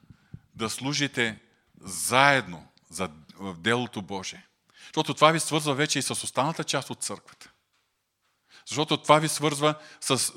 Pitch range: 100-135 Hz